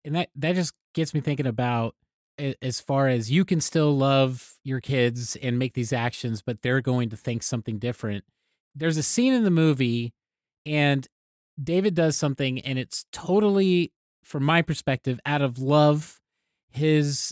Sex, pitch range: male, 125-155 Hz